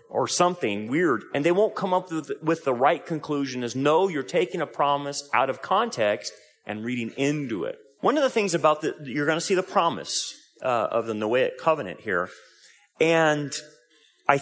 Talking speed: 185 wpm